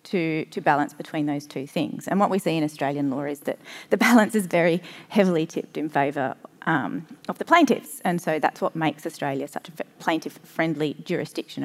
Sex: female